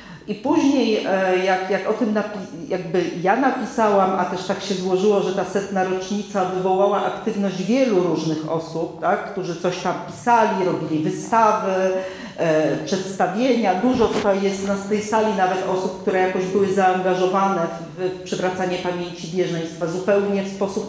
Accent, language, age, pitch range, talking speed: native, Polish, 40-59, 180-215 Hz, 150 wpm